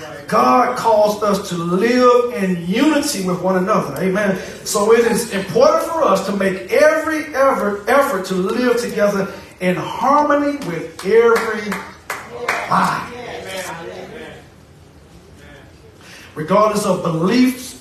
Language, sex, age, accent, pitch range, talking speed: English, male, 50-69, American, 190-245 Hz, 110 wpm